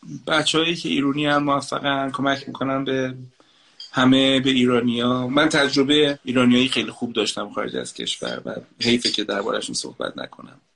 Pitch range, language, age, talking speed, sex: 115-140 Hz, Persian, 30-49, 160 wpm, male